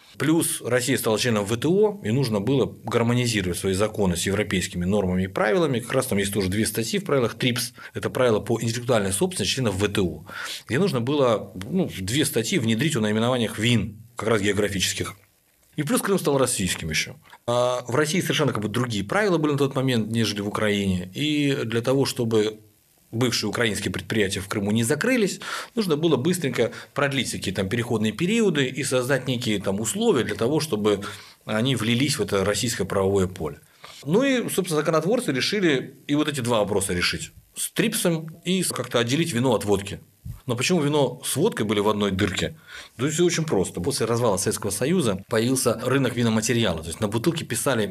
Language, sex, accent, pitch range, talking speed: Russian, male, native, 105-145 Hz, 185 wpm